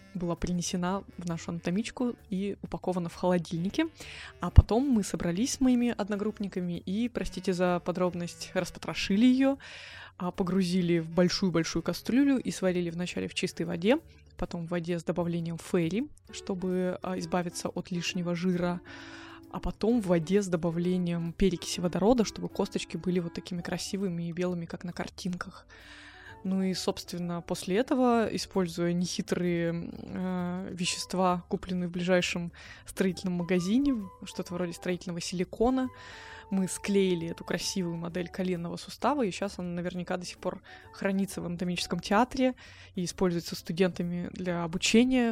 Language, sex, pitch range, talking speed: Russian, female, 175-200 Hz, 135 wpm